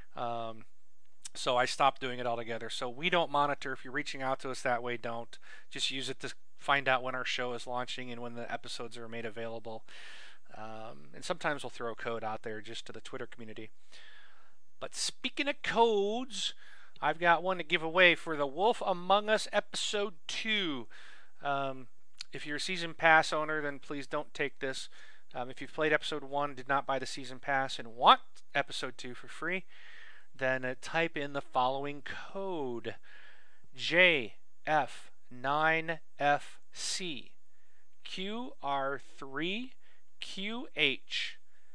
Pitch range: 125-170 Hz